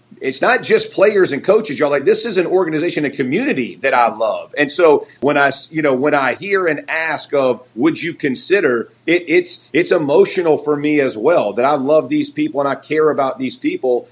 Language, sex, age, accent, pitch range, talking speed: English, male, 40-59, American, 140-170 Hz, 215 wpm